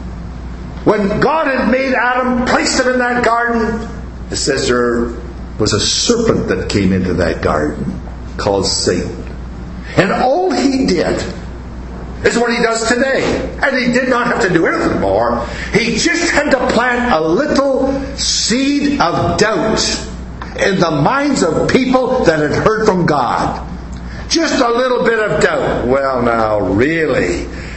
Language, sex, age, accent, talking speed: English, male, 60-79, American, 150 wpm